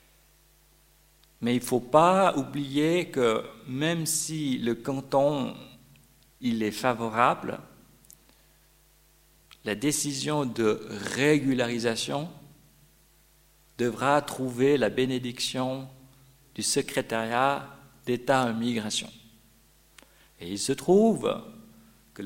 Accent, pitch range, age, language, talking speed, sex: French, 115-150 Hz, 50-69, French, 85 wpm, male